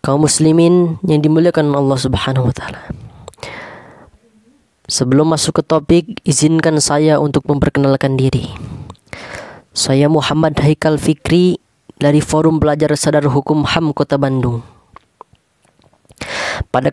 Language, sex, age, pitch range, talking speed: Indonesian, female, 20-39, 150-220 Hz, 100 wpm